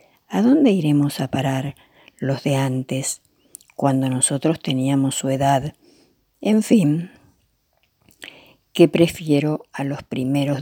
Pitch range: 135-170 Hz